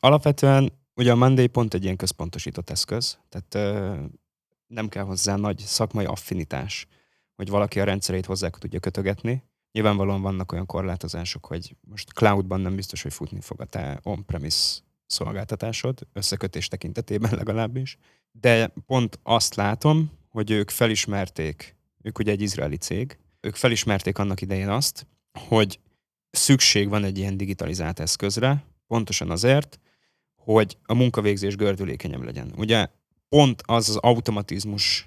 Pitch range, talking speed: 95-115 Hz, 135 wpm